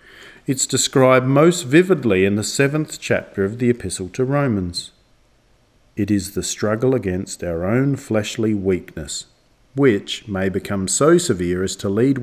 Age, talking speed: 50-69, 150 wpm